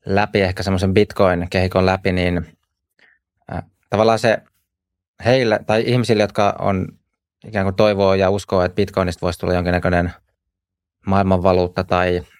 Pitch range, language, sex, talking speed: 90-100 Hz, Finnish, male, 125 wpm